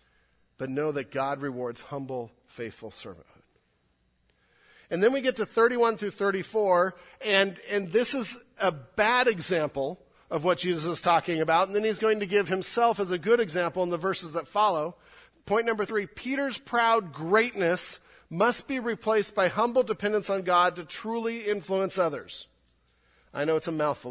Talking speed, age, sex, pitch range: 170 wpm, 40-59, male, 150-220 Hz